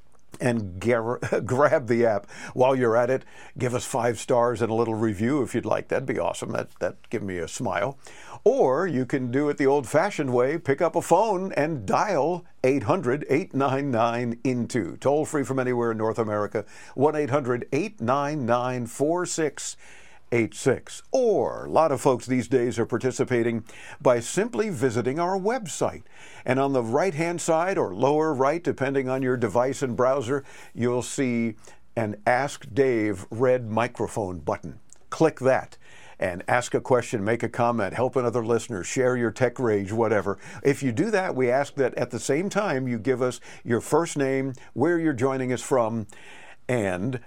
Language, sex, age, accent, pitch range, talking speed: English, male, 50-69, American, 120-145 Hz, 160 wpm